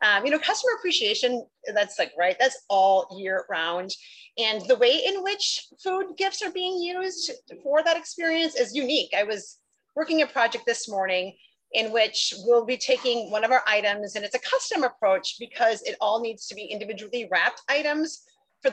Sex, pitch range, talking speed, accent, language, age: female, 205-295 Hz, 185 wpm, American, English, 30-49